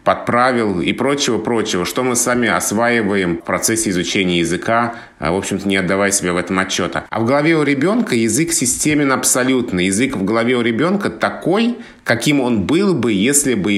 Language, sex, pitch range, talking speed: Russian, male, 90-120 Hz, 170 wpm